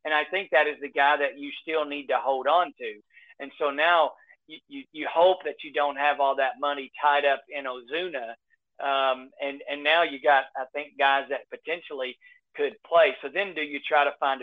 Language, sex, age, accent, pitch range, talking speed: English, male, 40-59, American, 140-170 Hz, 220 wpm